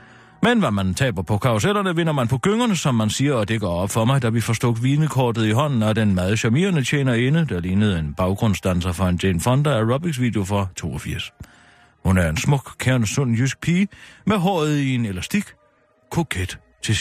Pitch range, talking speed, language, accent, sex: 95-125 Hz, 205 wpm, Danish, German, male